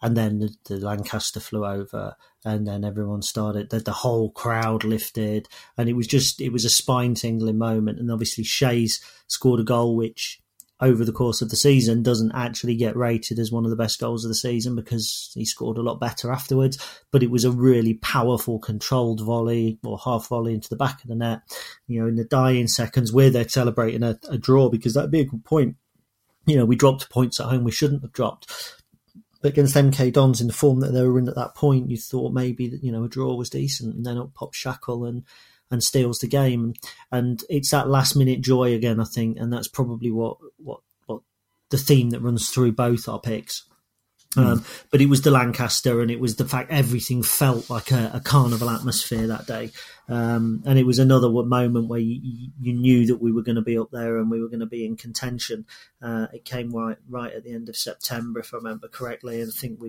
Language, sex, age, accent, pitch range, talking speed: English, male, 30-49, British, 115-130 Hz, 225 wpm